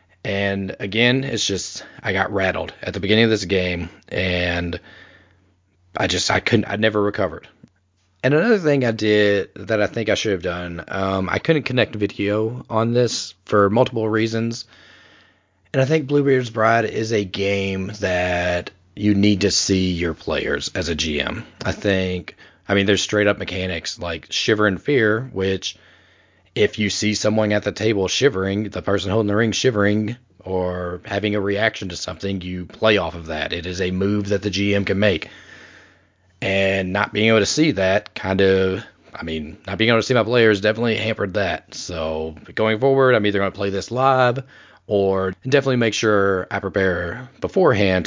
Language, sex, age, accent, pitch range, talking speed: English, male, 30-49, American, 90-110 Hz, 180 wpm